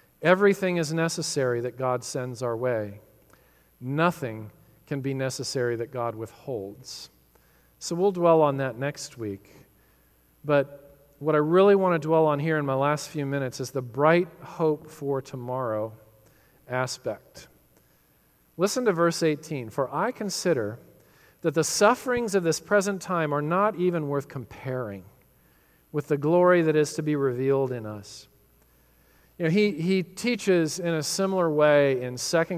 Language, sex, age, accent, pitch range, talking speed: English, male, 40-59, American, 125-170 Hz, 155 wpm